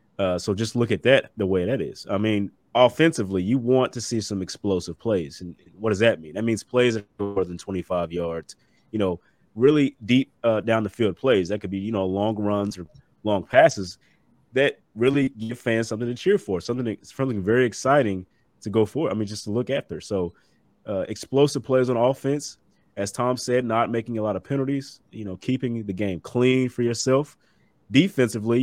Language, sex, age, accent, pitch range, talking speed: English, male, 20-39, American, 95-125 Hz, 205 wpm